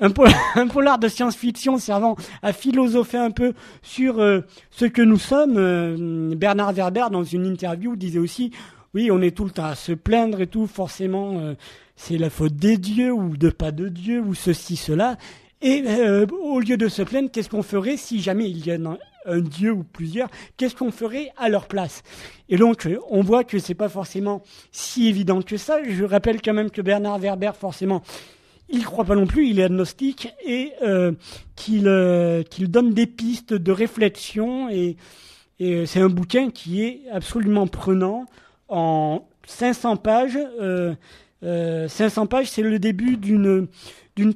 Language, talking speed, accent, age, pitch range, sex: French, 185 wpm, French, 40-59, 185-235 Hz, male